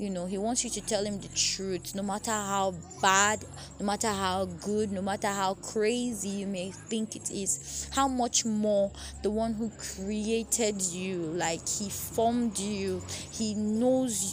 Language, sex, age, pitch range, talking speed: English, female, 20-39, 195-240 Hz, 170 wpm